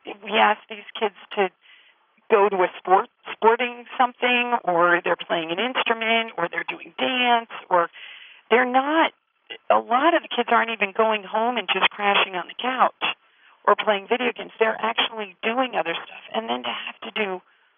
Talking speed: 180 wpm